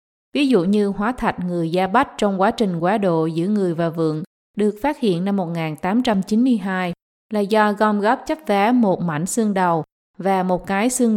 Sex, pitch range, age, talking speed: female, 175-225 Hz, 20-39, 195 wpm